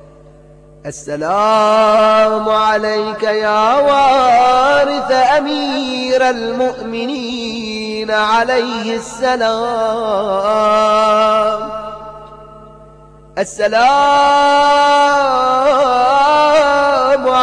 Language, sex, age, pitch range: Arabic, male, 30-49, 220-285 Hz